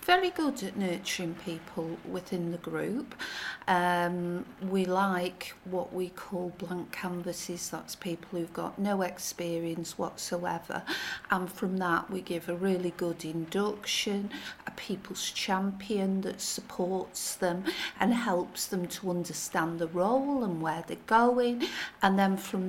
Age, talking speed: 50-69, 140 wpm